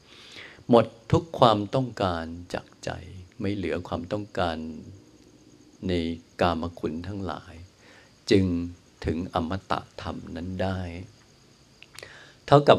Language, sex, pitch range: Thai, male, 90-115 Hz